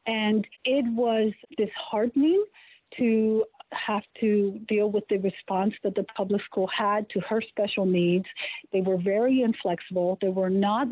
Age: 50-69